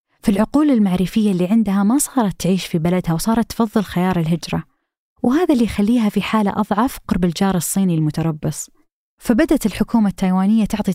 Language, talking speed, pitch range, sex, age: Arabic, 150 wpm, 175-230 Hz, female, 20-39